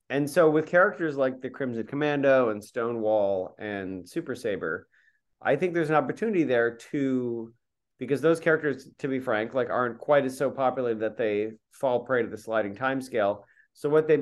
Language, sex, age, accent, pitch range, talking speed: English, male, 30-49, American, 105-135 Hz, 180 wpm